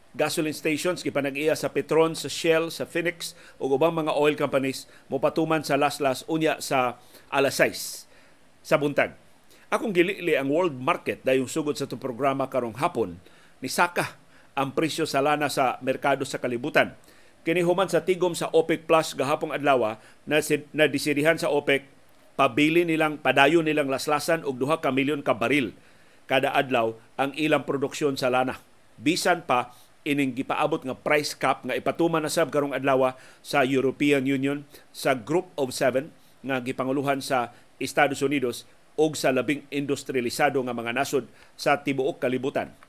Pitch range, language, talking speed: 130-160 Hz, Filipino, 155 wpm